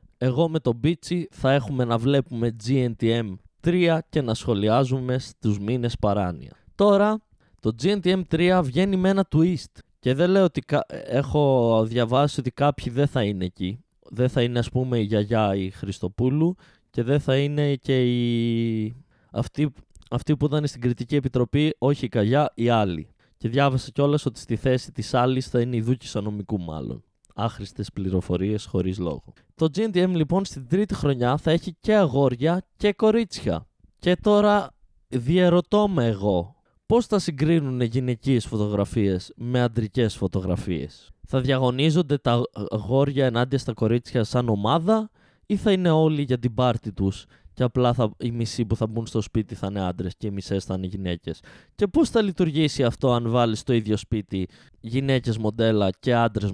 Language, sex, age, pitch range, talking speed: Greek, male, 20-39, 110-150 Hz, 165 wpm